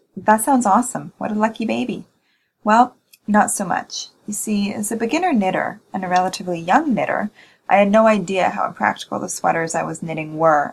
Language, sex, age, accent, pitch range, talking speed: English, female, 20-39, American, 175-230 Hz, 190 wpm